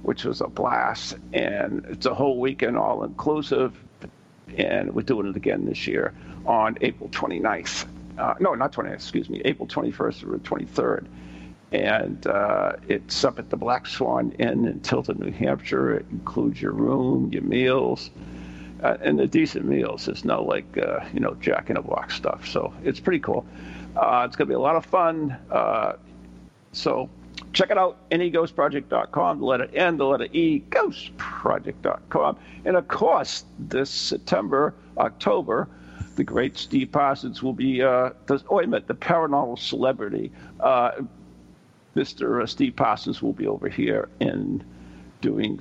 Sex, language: male, English